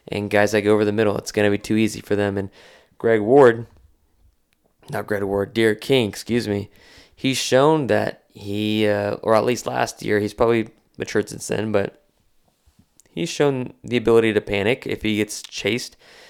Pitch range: 105-115 Hz